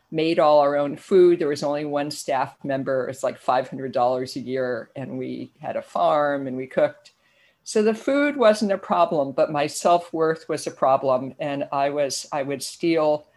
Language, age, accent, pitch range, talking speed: English, 50-69, American, 150-180 Hz, 190 wpm